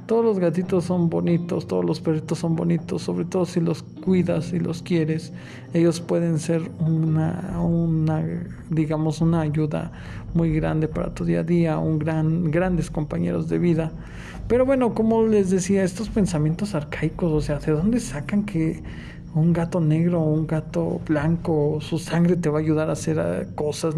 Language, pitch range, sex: Spanish, 155-175 Hz, male